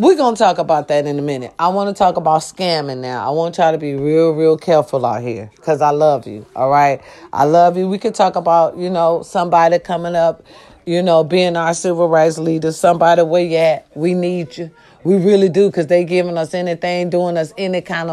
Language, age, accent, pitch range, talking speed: English, 40-59, American, 165-195 Hz, 225 wpm